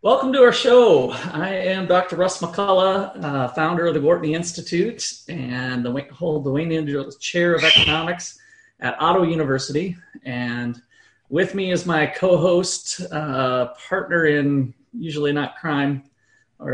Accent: American